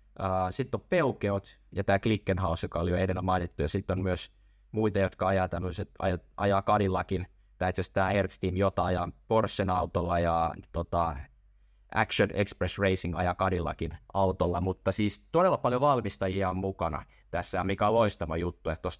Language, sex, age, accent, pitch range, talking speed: Finnish, male, 20-39, native, 85-100 Hz, 175 wpm